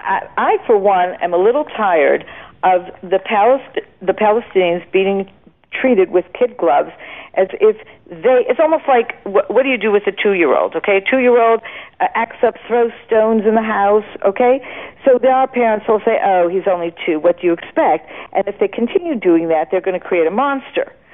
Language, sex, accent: English, female, American